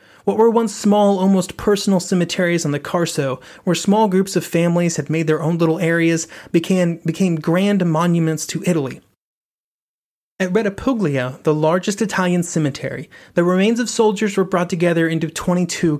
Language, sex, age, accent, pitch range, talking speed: English, male, 30-49, American, 155-185 Hz, 160 wpm